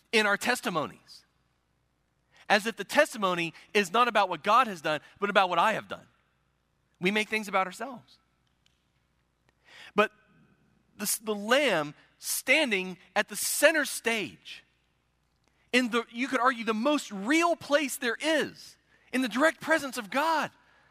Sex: male